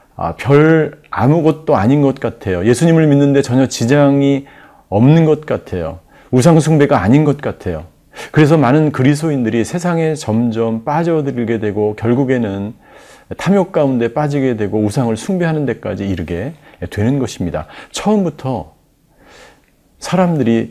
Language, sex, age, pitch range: Korean, male, 40-59, 110-155 Hz